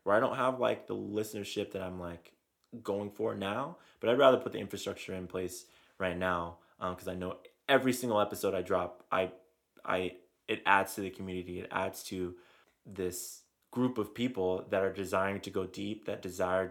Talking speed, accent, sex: 195 wpm, American, male